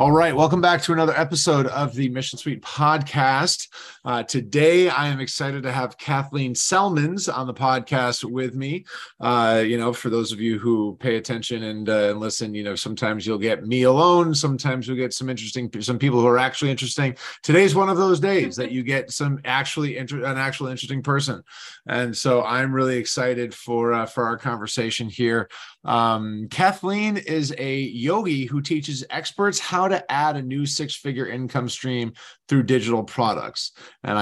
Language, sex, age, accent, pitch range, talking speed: English, male, 30-49, American, 120-145 Hz, 180 wpm